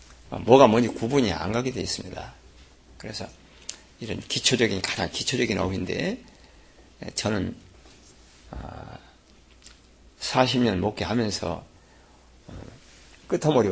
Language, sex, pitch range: Korean, male, 80-120 Hz